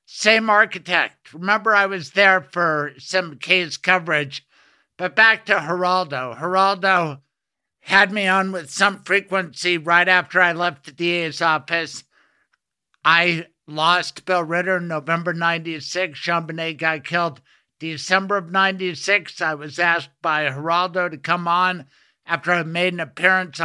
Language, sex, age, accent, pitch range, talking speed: English, male, 60-79, American, 160-190 Hz, 140 wpm